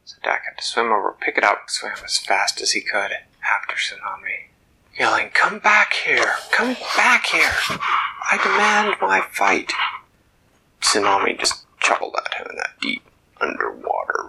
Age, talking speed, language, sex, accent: 30-49, 160 wpm, English, male, American